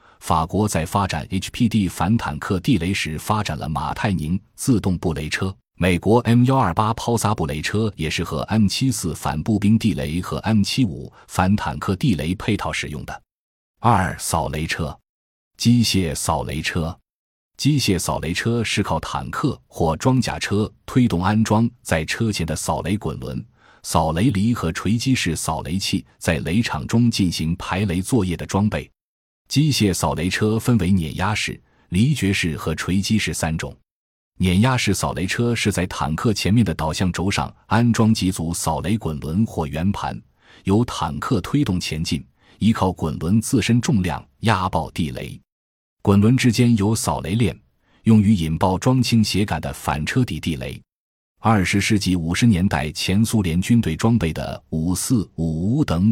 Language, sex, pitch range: Chinese, male, 80-110 Hz